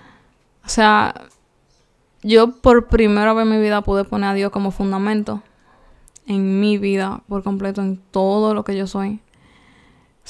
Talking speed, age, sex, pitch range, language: 155 wpm, 10-29, female, 195-235 Hz, Spanish